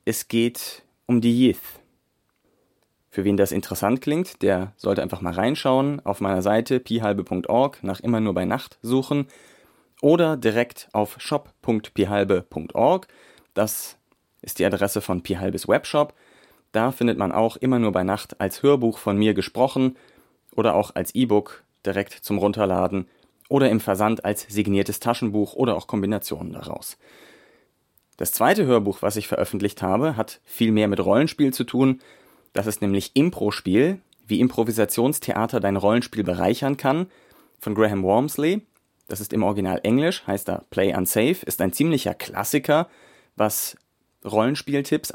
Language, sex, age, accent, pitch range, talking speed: German, male, 30-49, German, 100-130 Hz, 145 wpm